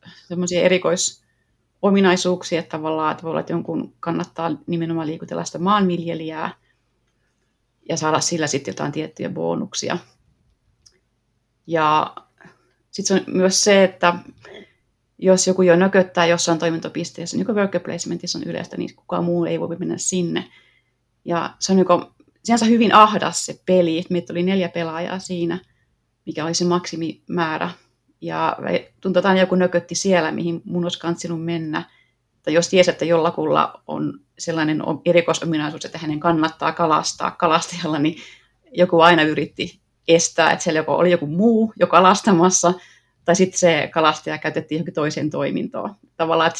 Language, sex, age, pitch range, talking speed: Finnish, female, 30-49, 160-180 Hz, 145 wpm